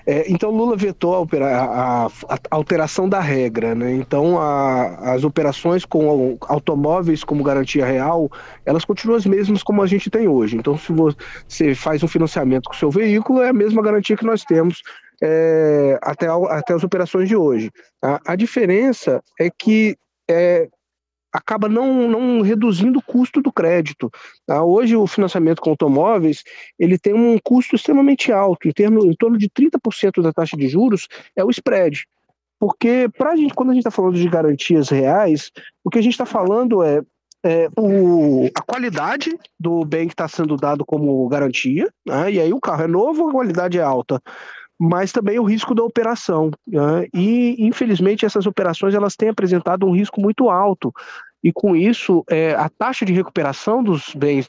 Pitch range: 150-215 Hz